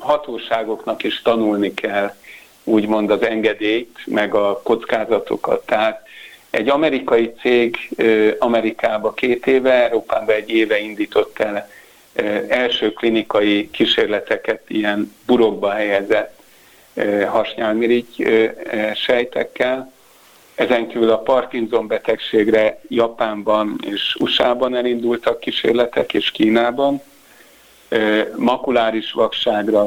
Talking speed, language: 90 wpm, Hungarian